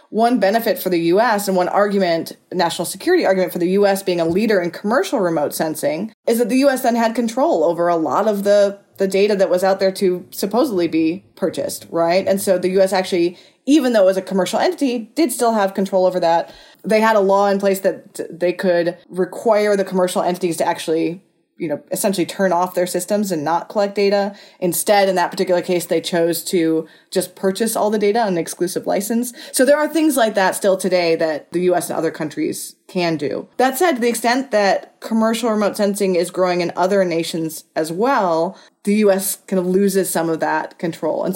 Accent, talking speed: American, 215 wpm